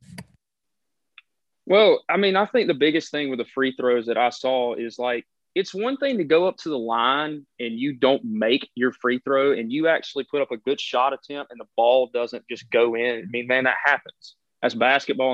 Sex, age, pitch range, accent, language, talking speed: male, 30-49, 135-200 Hz, American, English, 220 wpm